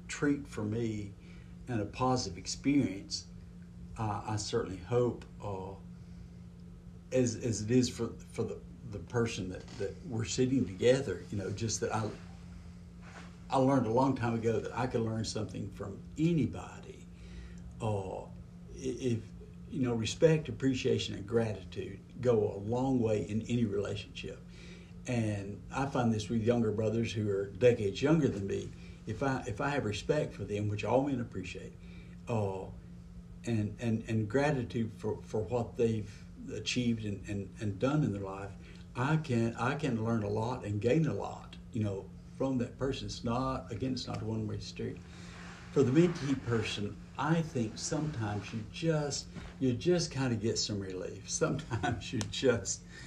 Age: 60-79